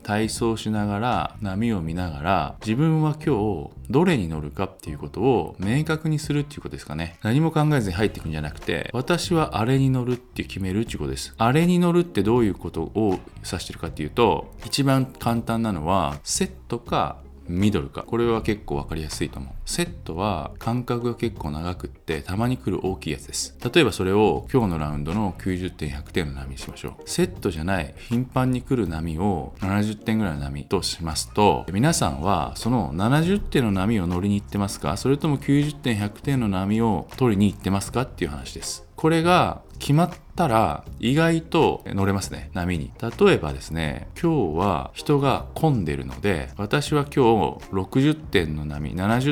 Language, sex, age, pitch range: Japanese, male, 20-39, 80-120 Hz